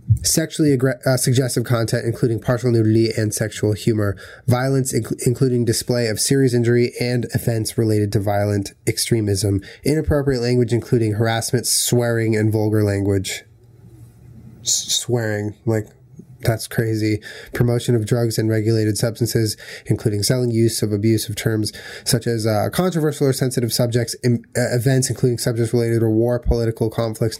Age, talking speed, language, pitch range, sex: 20-39, 135 wpm, English, 110-130 Hz, male